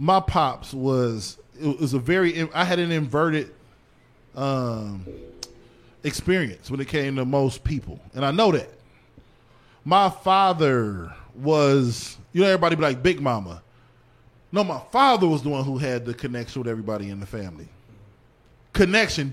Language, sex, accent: English, male, American